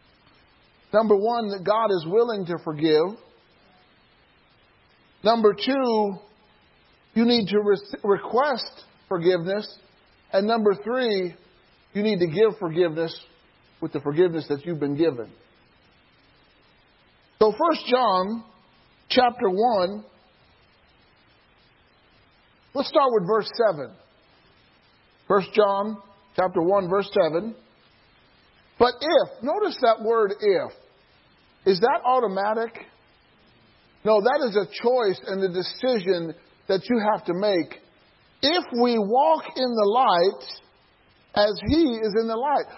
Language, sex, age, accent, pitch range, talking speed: English, male, 50-69, American, 190-245 Hz, 110 wpm